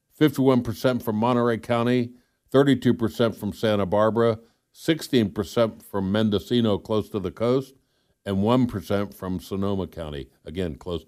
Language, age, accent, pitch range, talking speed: English, 60-79, American, 85-115 Hz, 120 wpm